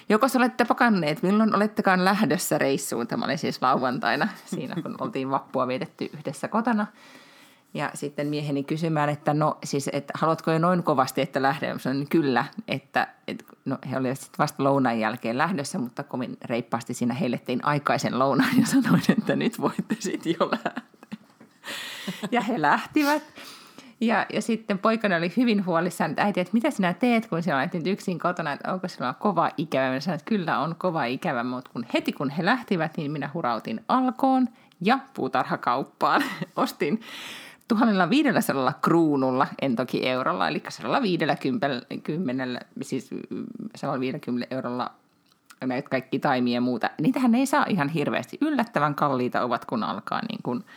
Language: Finnish